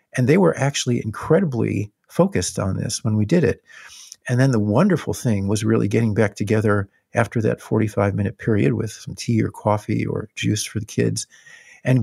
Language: English